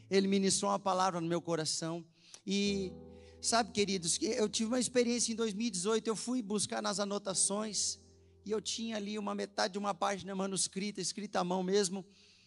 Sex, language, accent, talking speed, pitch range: male, Portuguese, Brazilian, 175 wpm, 185-215 Hz